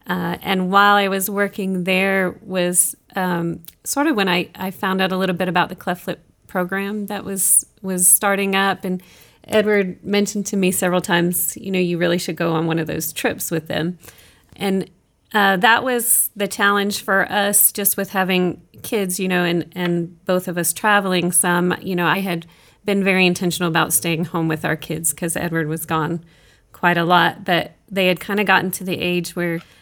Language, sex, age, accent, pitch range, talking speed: English, female, 30-49, American, 170-190 Hz, 200 wpm